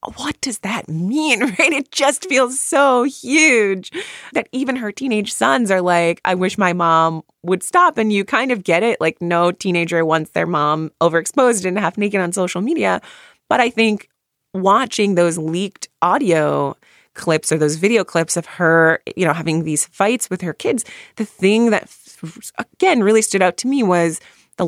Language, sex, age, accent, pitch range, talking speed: English, female, 20-39, American, 165-220 Hz, 180 wpm